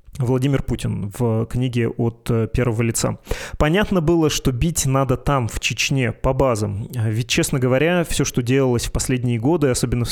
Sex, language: male, Russian